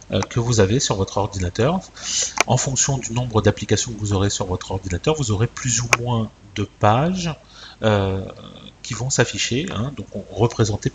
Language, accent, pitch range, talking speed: French, French, 100-125 Hz, 170 wpm